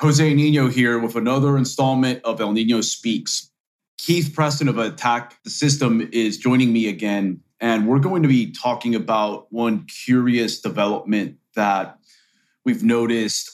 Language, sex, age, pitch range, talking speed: English, male, 30-49, 115-140 Hz, 145 wpm